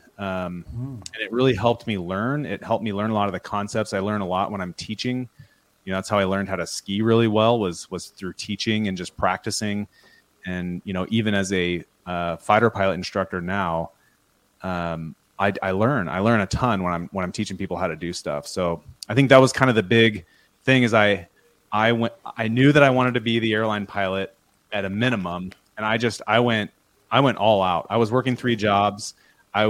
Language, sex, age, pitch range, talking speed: English, male, 30-49, 95-115 Hz, 225 wpm